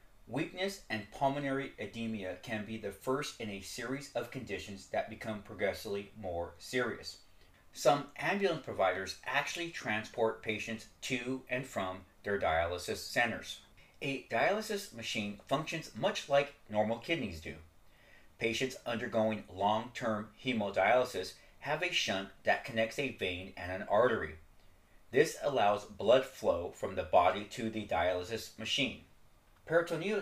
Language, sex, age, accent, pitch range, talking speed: English, male, 40-59, American, 100-130 Hz, 130 wpm